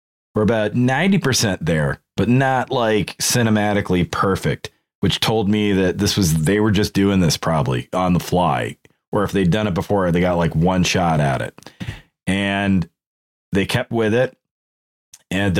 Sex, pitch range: male, 90-110 Hz